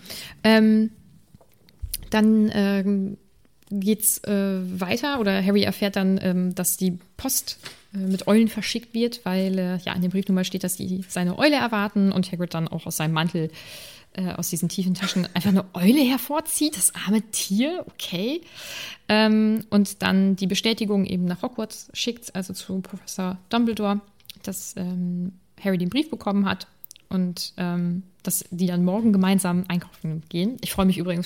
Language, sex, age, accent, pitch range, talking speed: German, female, 20-39, German, 180-220 Hz, 165 wpm